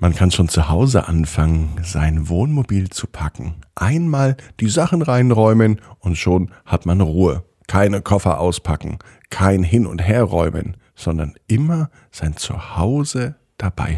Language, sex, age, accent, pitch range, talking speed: German, male, 50-69, German, 85-125 Hz, 135 wpm